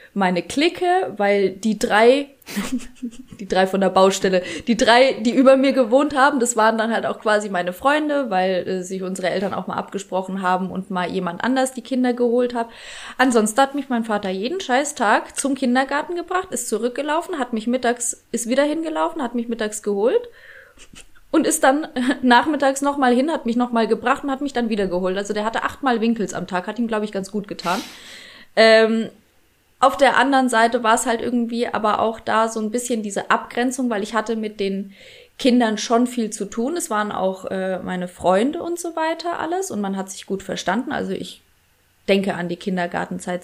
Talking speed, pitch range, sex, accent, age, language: 200 wpm, 195-255 Hz, female, German, 20-39, German